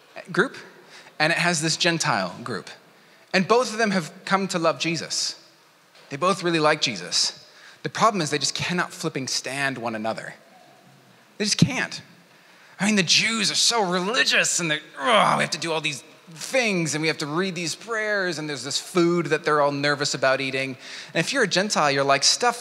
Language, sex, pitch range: English, male, 145-190 Hz